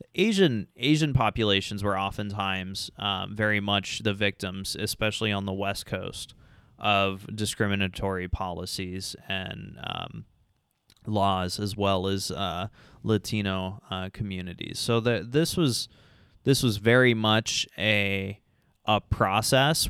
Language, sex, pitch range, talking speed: English, male, 100-115 Hz, 120 wpm